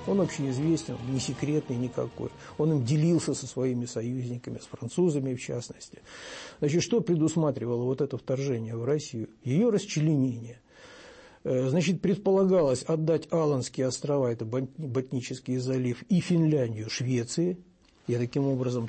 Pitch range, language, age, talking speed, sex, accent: 125-155 Hz, Russian, 60-79, 125 wpm, male, native